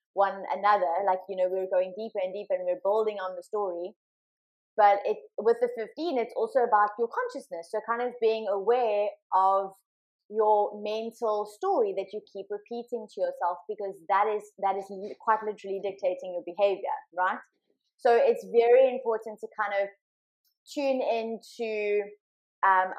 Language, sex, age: English, female, 20-39